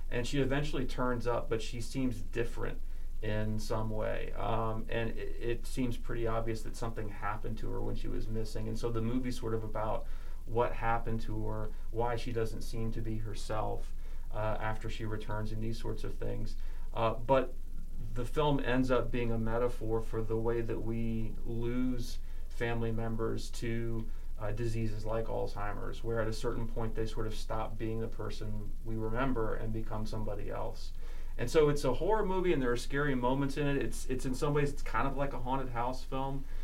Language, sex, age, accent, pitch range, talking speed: English, male, 30-49, American, 110-125 Hz, 200 wpm